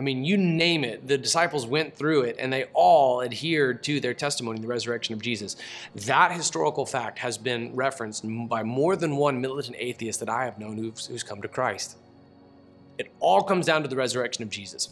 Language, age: English, 30-49